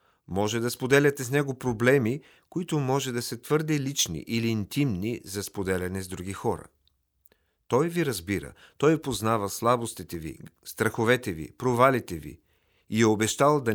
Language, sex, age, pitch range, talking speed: Bulgarian, male, 40-59, 95-130 Hz, 150 wpm